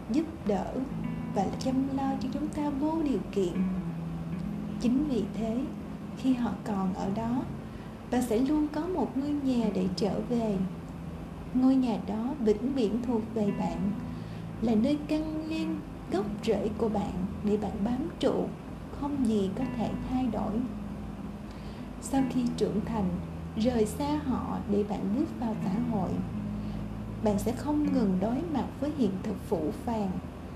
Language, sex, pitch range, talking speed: Vietnamese, female, 195-250 Hz, 155 wpm